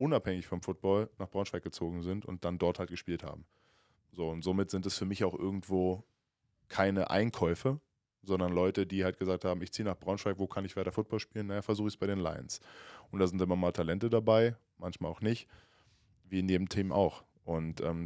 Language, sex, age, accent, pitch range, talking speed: German, male, 10-29, German, 90-105 Hz, 215 wpm